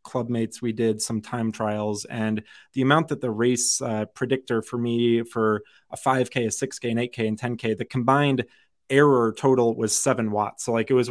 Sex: male